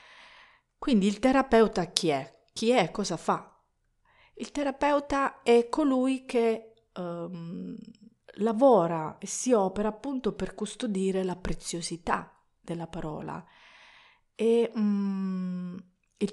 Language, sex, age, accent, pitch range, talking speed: Italian, female, 40-59, native, 165-220 Hz, 100 wpm